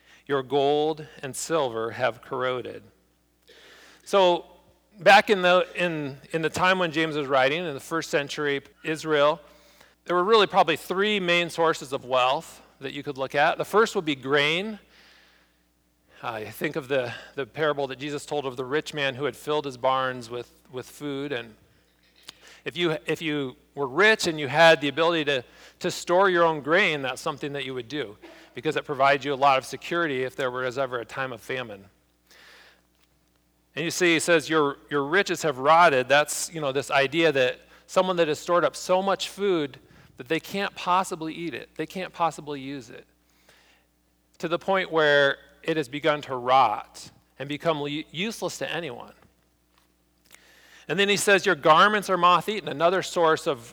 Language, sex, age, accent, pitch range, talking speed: English, male, 40-59, American, 135-170 Hz, 180 wpm